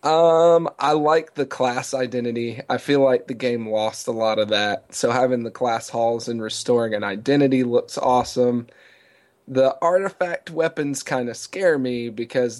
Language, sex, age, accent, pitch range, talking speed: English, male, 20-39, American, 110-130 Hz, 165 wpm